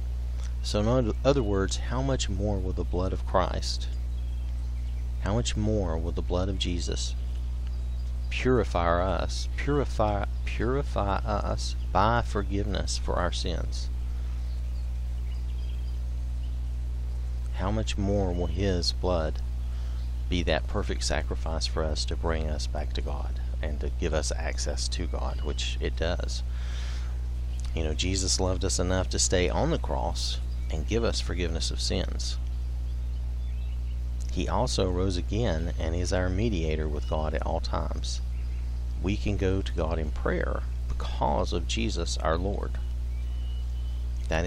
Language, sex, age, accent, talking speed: English, male, 40-59, American, 135 wpm